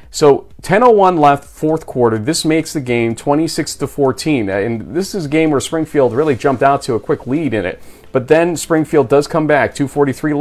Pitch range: 120-155 Hz